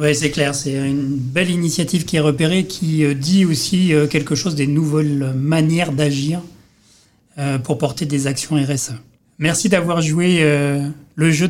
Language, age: French, 40-59